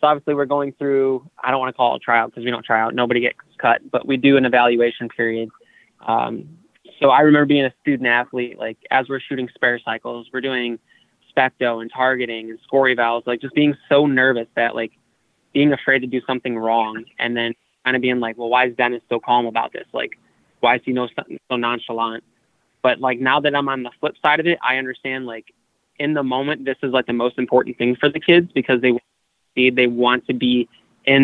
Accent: American